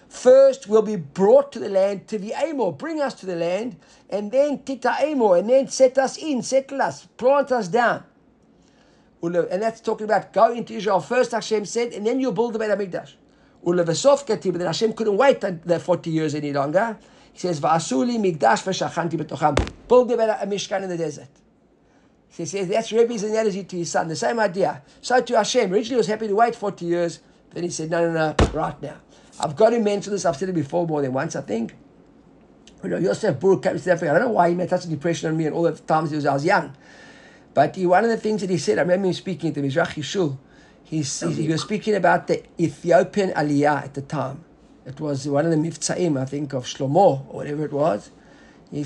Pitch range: 165-225 Hz